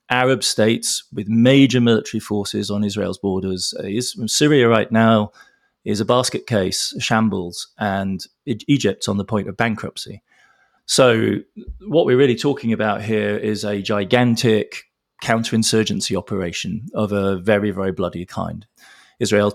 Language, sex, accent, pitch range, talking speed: English, male, British, 95-115 Hz, 130 wpm